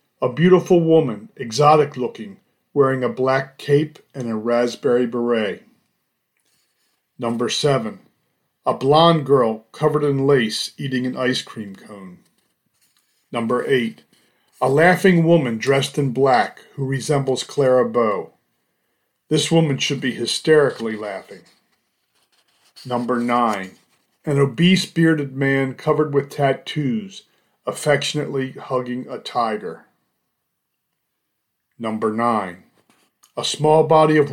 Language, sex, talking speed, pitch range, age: English, male, 110 wpm, 125-155 Hz, 40-59